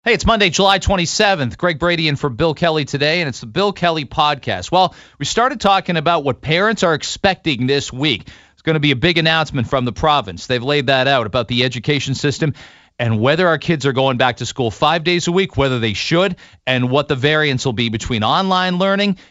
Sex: male